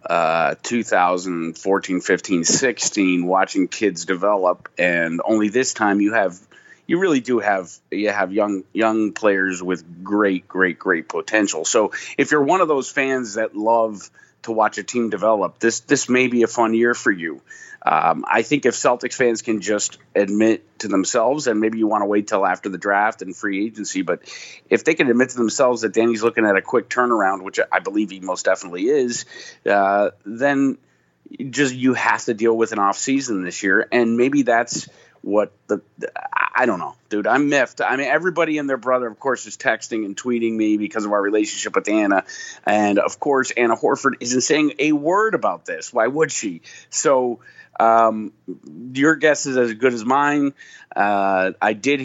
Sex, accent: male, American